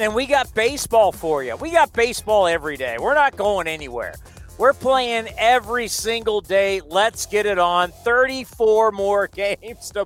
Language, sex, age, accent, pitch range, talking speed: English, male, 40-59, American, 180-230 Hz, 165 wpm